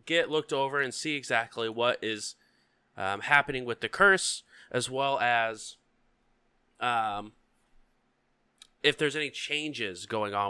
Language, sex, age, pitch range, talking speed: English, male, 20-39, 105-125 Hz, 130 wpm